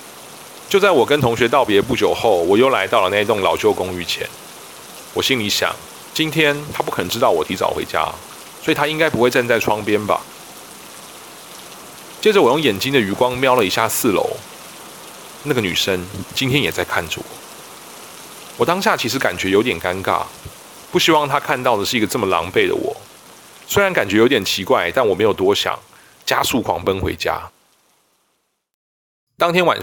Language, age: Chinese, 30-49